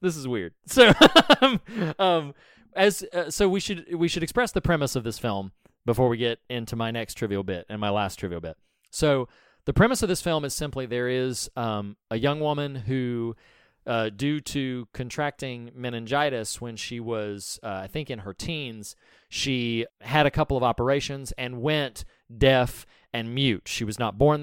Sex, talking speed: male, 185 wpm